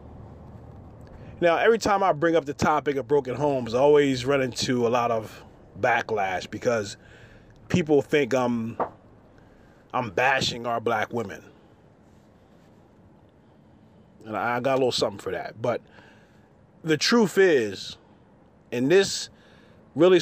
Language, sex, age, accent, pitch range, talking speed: English, male, 30-49, American, 110-155 Hz, 130 wpm